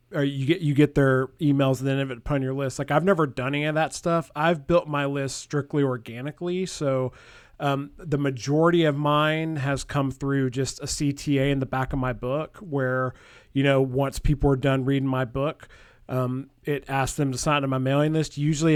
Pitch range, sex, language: 135-155 Hz, male, English